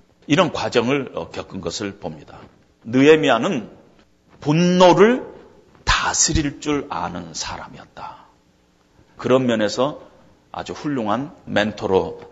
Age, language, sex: 40-59, Korean, male